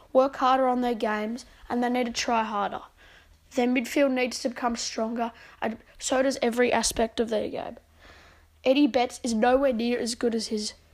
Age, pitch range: 10-29, 230-275 Hz